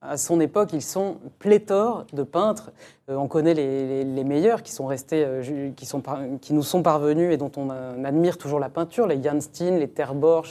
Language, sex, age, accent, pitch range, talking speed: French, female, 30-49, French, 150-190 Hz, 230 wpm